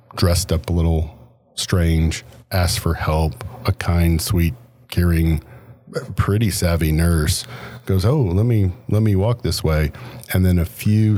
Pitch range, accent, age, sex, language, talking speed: 80-105 Hz, American, 40-59, male, English, 150 wpm